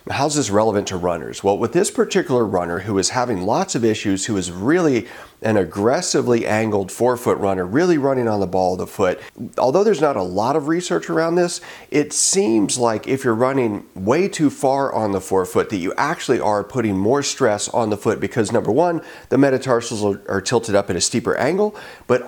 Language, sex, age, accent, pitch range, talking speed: English, male, 40-59, American, 100-135 Hz, 205 wpm